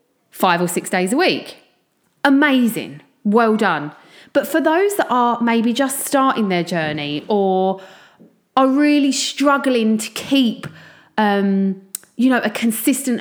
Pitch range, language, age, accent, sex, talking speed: 195-260 Hz, English, 30-49, British, female, 135 wpm